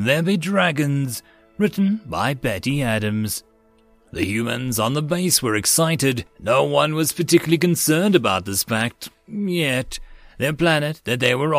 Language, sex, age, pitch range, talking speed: English, male, 30-49, 110-155 Hz, 145 wpm